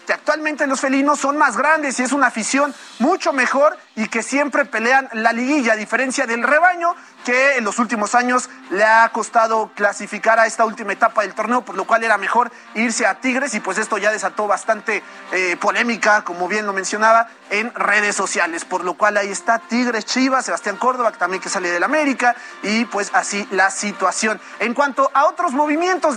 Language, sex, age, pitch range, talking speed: Spanish, male, 30-49, 220-280 Hz, 200 wpm